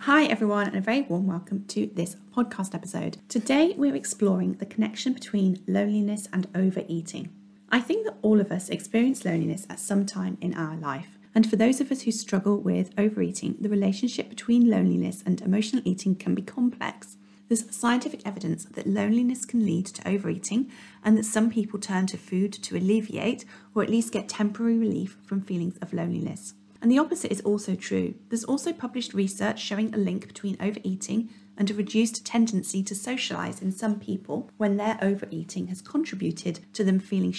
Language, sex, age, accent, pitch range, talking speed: English, female, 30-49, British, 185-225 Hz, 180 wpm